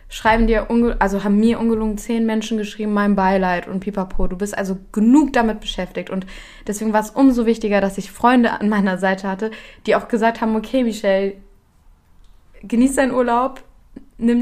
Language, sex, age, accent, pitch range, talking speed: German, female, 20-39, German, 190-215 Hz, 180 wpm